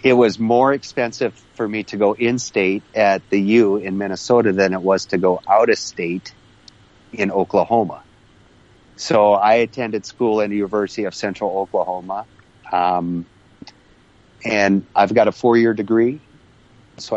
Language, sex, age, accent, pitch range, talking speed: English, male, 40-59, American, 95-115 Hz, 150 wpm